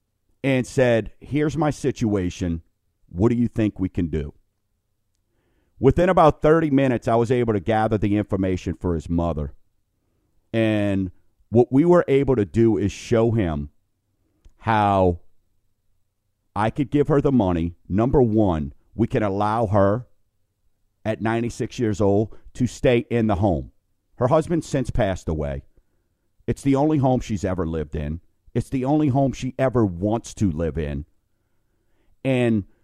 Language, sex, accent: English, male, American